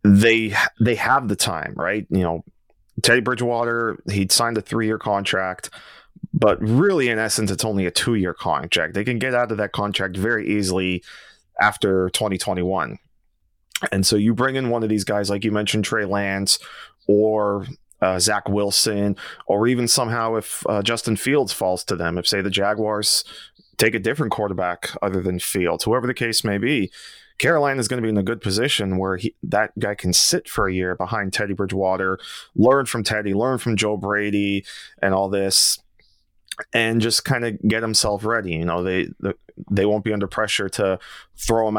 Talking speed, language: 190 wpm, English